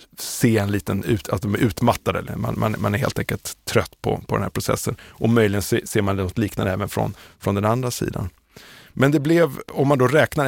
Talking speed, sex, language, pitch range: 230 wpm, male, Swedish, 100-125 Hz